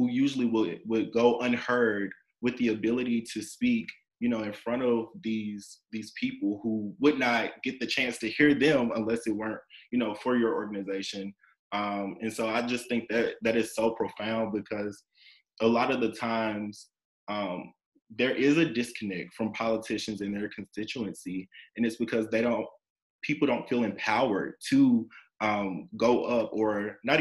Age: 20-39